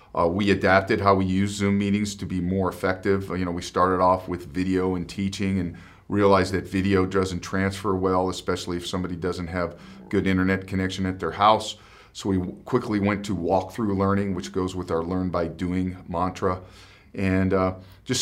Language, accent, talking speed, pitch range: English, American, 190 wpm, 95-115 Hz